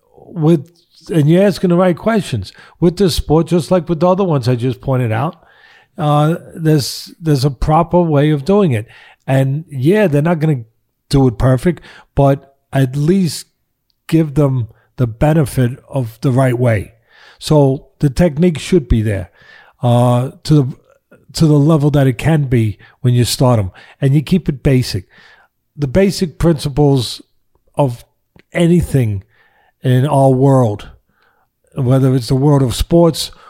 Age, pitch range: 50-69, 120-155 Hz